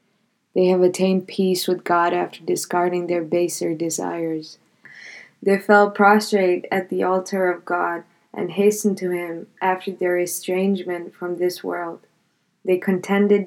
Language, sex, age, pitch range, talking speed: English, female, 20-39, 180-195 Hz, 140 wpm